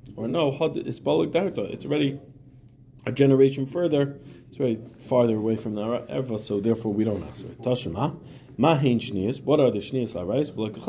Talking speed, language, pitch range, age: 125 wpm, English, 105-135 Hz, 30-49